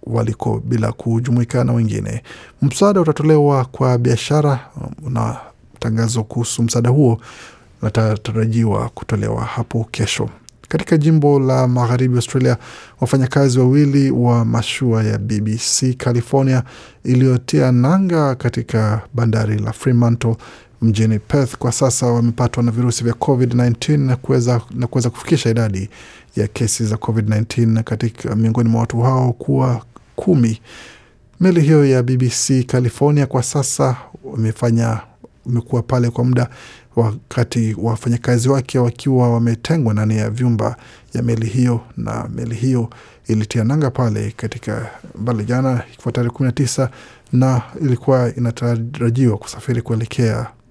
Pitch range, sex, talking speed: 115-130 Hz, male, 110 wpm